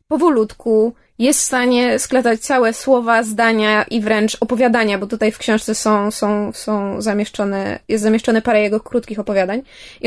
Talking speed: 155 wpm